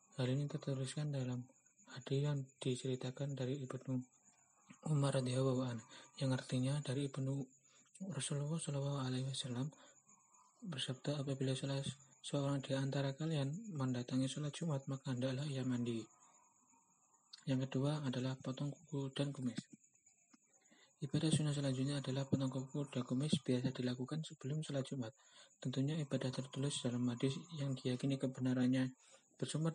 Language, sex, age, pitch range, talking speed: Indonesian, male, 30-49, 130-140 Hz, 125 wpm